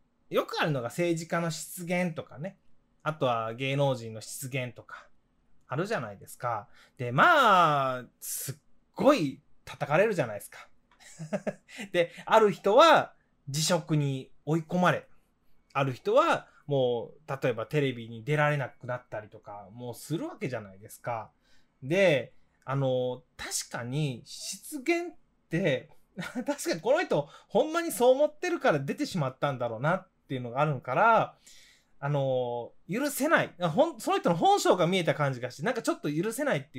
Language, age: Japanese, 20-39